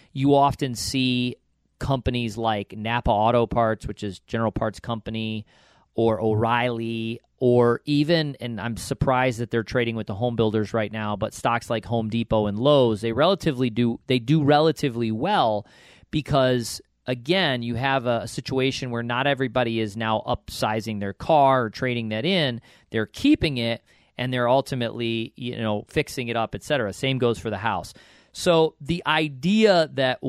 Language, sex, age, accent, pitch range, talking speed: English, male, 40-59, American, 110-140 Hz, 165 wpm